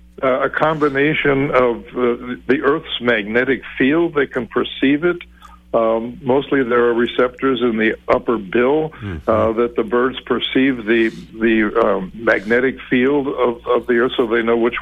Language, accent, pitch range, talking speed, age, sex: English, American, 115-130 Hz, 160 wpm, 60-79, male